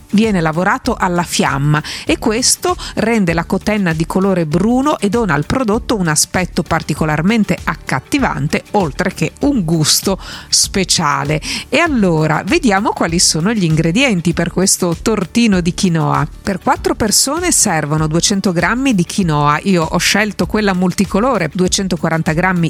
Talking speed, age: 135 wpm, 50-69